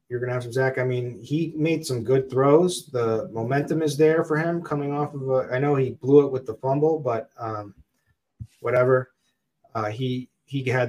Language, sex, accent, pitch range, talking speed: English, male, American, 115-135 Hz, 210 wpm